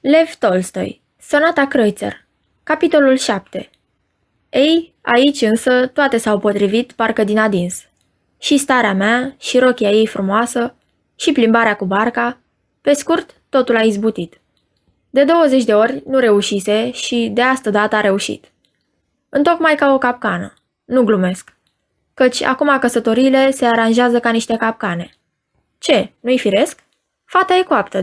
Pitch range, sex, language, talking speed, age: 210-270 Hz, female, Romanian, 135 wpm, 20-39